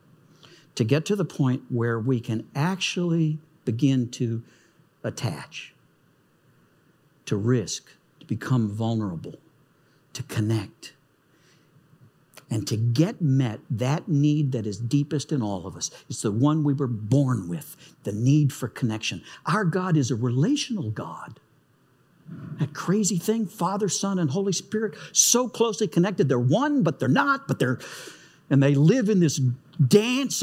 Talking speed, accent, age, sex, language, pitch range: 145 wpm, American, 60-79, male, English, 135-180 Hz